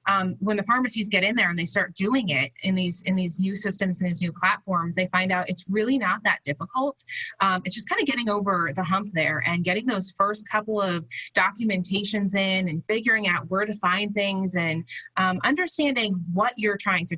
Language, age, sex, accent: English, 20-39, female, American